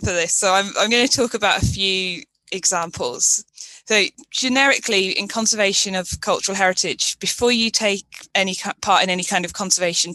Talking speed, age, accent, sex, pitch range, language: 170 wpm, 20-39, British, female, 185-220 Hz, English